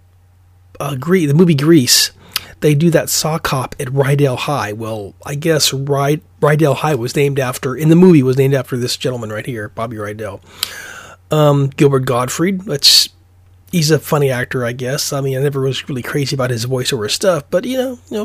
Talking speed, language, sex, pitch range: 190 wpm, English, male, 110-150 Hz